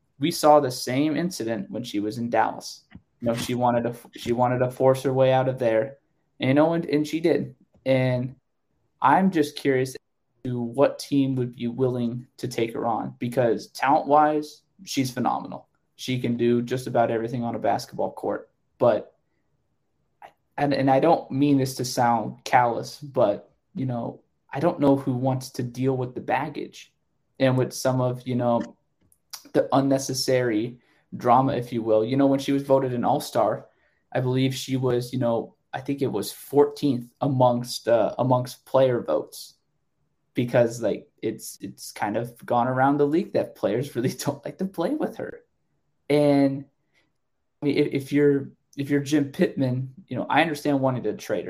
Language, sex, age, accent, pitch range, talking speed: English, male, 20-39, American, 125-145 Hz, 175 wpm